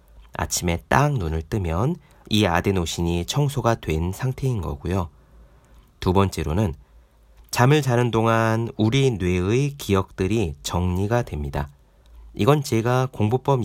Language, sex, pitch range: Korean, male, 75-115 Hz